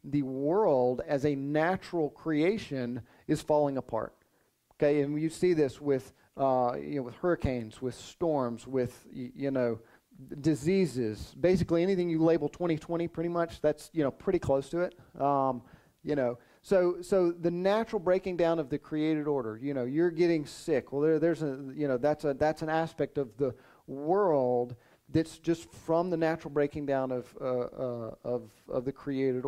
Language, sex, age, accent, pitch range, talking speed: English, male, 40-59, American, 125-165 Hz, 180 wpm